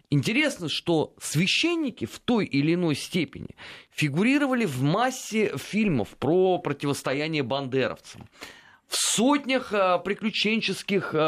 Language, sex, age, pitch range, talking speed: Russian, male, 30-49, 155-235 Hz, 95 wpm